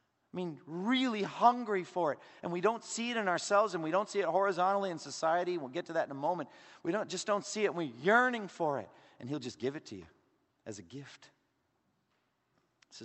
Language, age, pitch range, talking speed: English, 50-69, 130-175 Hz, 230 wpm